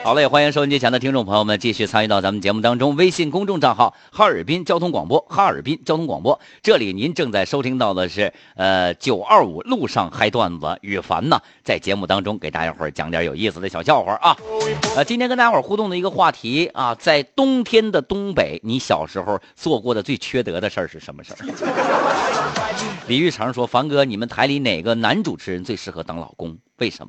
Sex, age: male, 50-69